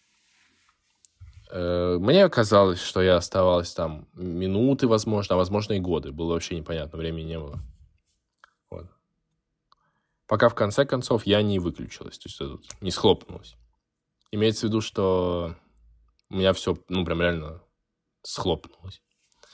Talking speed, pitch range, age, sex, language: 125 wpm, 90-115 Hz, 20-39, male, Russian